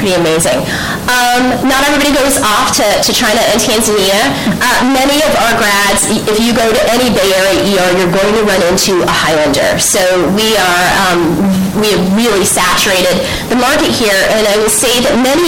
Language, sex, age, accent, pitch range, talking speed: English, female, 30-49, American, 180-215 Hz, 185 wpm